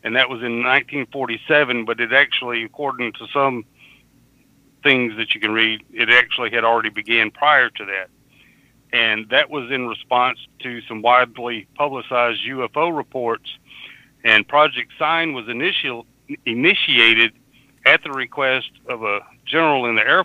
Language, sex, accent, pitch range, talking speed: English, male, American, 115-135 Hz, 145 wpm